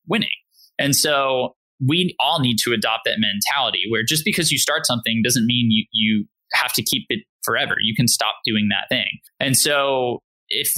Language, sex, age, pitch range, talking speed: English, male, 20-39, 115-140 Hz, 190 wpm